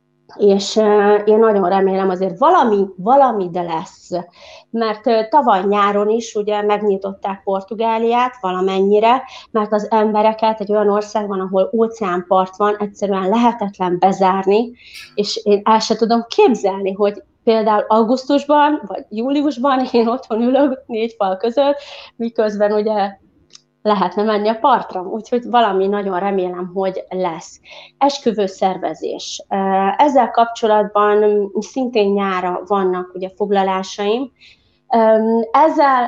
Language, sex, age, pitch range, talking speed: Hungarian, female, 30-49, 195-235 Hz, 115 wpm